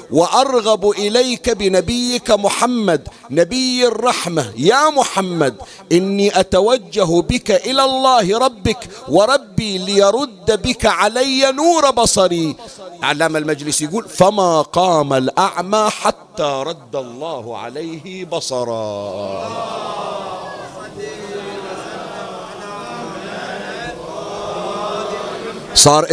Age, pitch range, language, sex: 50-69, 160-230 Hz, Arabic, male